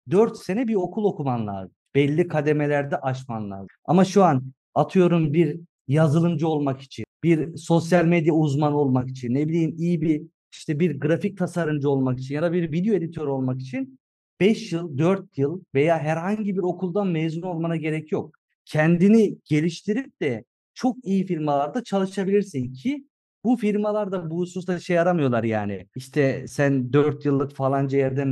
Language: Turkish